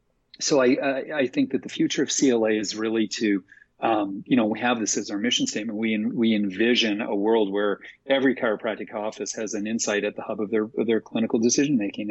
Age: 30-49